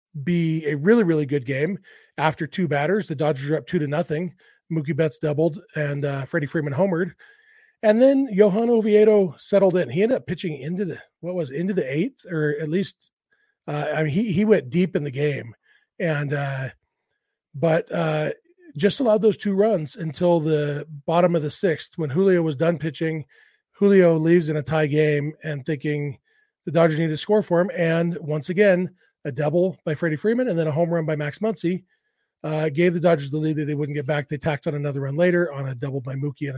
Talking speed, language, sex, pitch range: 210 wpm, English, male, 155-200 Hz